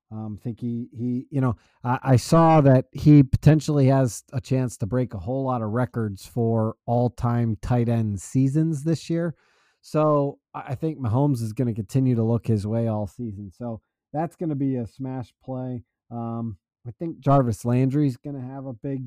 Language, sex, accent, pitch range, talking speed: English, male, American, 115-145 Hz, 185 wpm